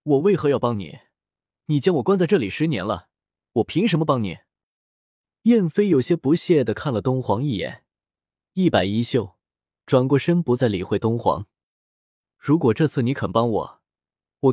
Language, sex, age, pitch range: Chinese, male, 20-39, 105-155 Hz